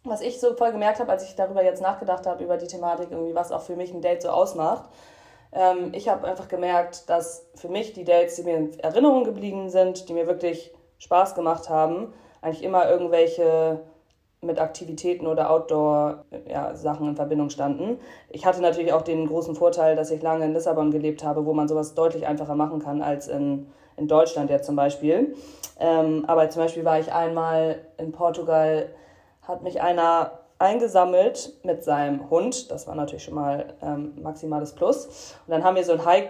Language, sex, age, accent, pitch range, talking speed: German, female, 20-39, German, 150-175 Hz, 190 wpm